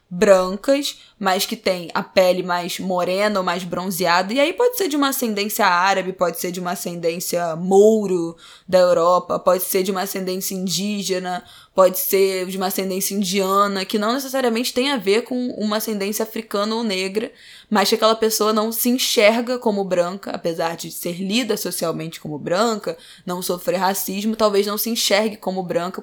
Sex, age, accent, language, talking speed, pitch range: female, 10-29, Brazilian, Portuguese, 175 wpm, 185-220 Hz